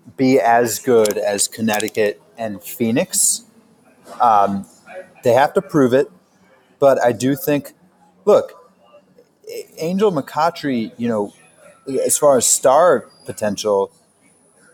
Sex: male